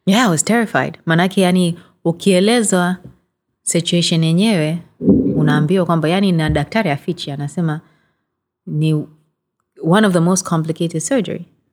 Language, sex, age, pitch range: Swahili, female, 20-39, 150-180 Hz